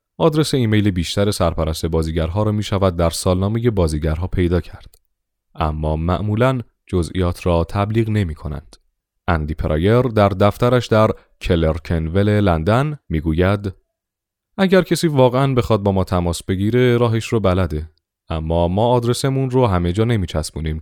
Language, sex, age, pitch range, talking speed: Persian, male, 30-49, 85-115 Hz, 135 wpm